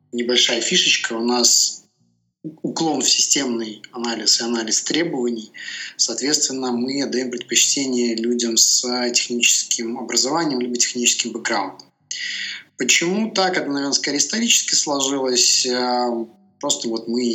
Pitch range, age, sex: 115-130 Hz, 20-39, male